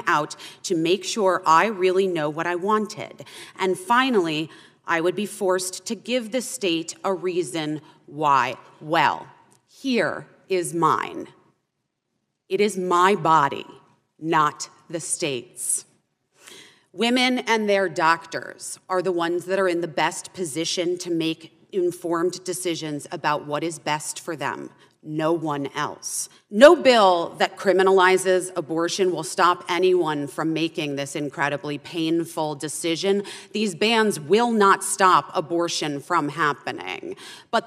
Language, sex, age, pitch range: English, female, 30-49, 165-200 Hz